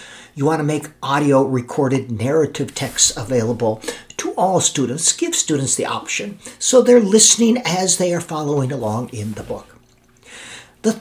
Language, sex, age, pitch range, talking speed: English, male, 50-69, 130-190 Hz, 145 wpm